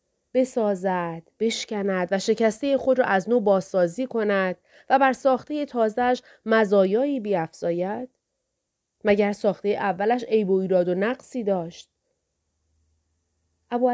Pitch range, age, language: 180-240 Hz, 30-49, Persian